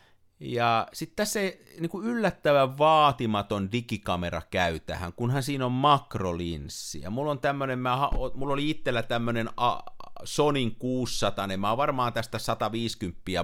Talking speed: 125 wpm